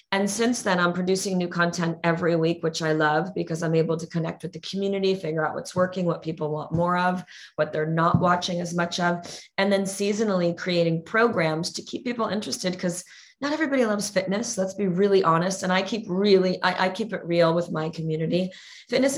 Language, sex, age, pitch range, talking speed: English, female, 30-49, 170-195 Hz, 210 wpm